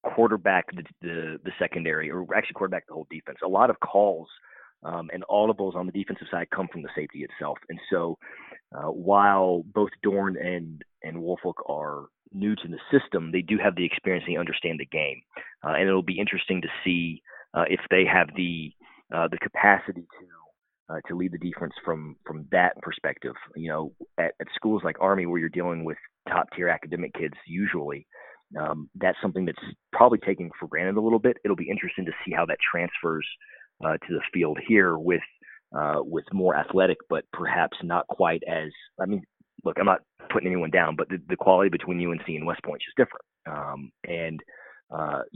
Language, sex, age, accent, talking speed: English, male, 30-49, American, 195 wpm